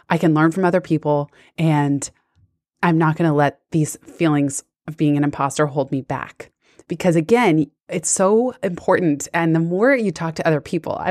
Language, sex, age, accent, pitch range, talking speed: English, female, 20-39, American, 155-205 Hz, 190 wpm